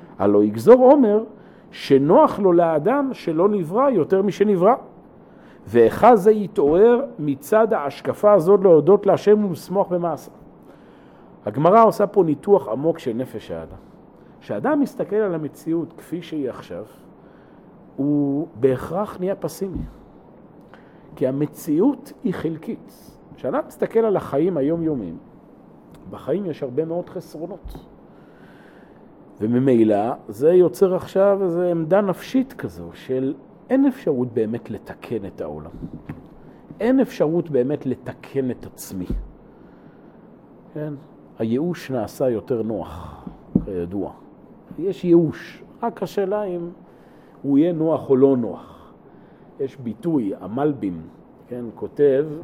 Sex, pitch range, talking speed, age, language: male, 130-200 Hz, 110 wpm, 50-69, Hebrew